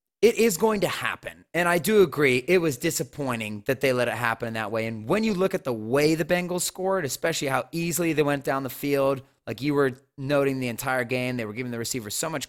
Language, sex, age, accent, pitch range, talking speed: English, male, 30-49, American, 125-170 Hz, 250 wpm